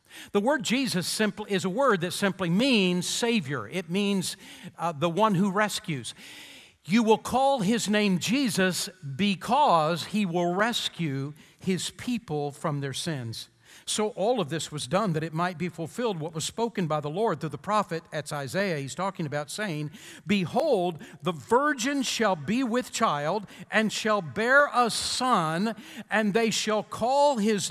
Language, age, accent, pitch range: English, 50-69, American, 160-220 Hz